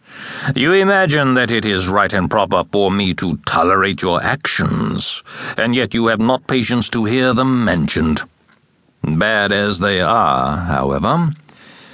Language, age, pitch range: English, 60-79, 90-130 Hz